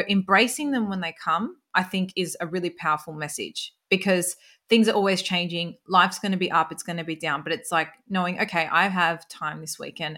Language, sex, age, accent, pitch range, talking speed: English, female, 20-39, Australian, 165-195 Hz, 220 wpm